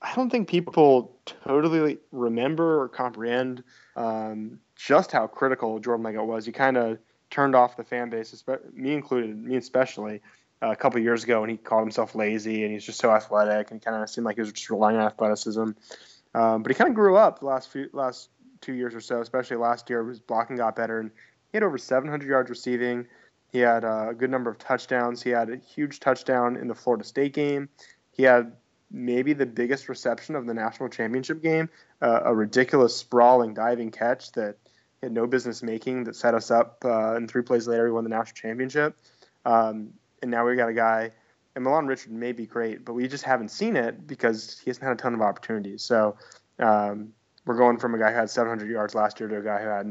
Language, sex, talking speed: English, male, 220 wpm